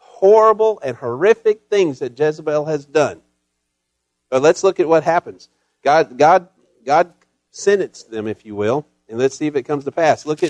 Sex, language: male, English